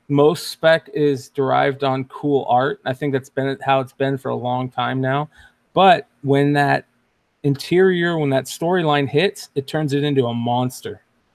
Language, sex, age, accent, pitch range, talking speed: English, male, 30-49, American, 125-140 Hz, 175 wpm